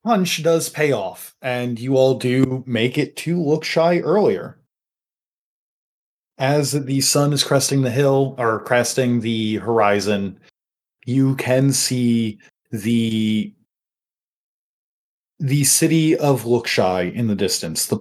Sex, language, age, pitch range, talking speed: male, English, 30-49, 115-145 Hz, 125 wpm